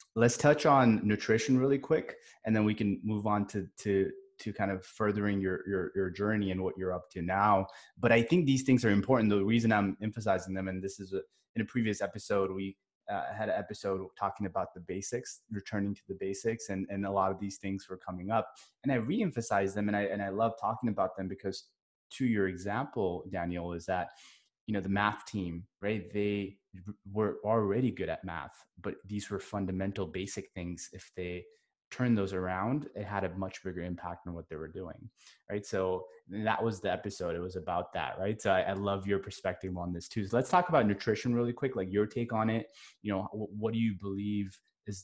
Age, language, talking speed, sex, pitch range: 20-39, English, 220 wpm, male, 95-110 Hz